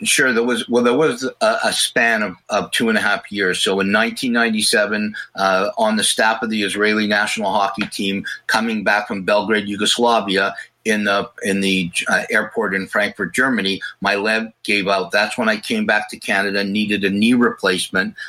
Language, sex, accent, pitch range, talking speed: English, male, American, 100-120 Hz, 190 wpm